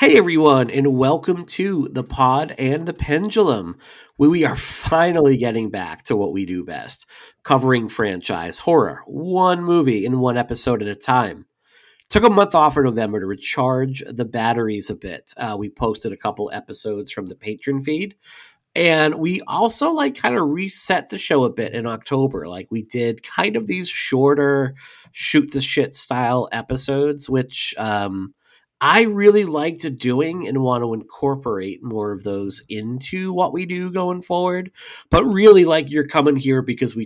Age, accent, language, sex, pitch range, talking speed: 40-59, American, English, male, 115-150 Hz, 170 wpm